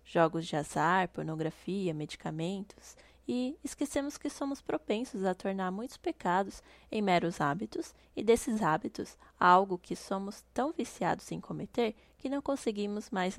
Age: 10-29